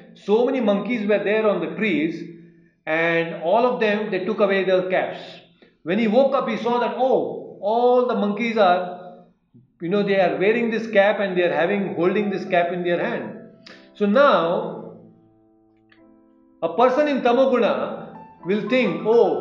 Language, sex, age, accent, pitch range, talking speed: English, male, 40-59, Indian, 170-230 Hz, 170 wpm